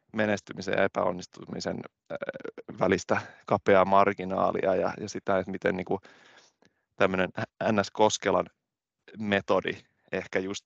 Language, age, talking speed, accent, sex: Finnish, 20-39, 100 wpm, native, male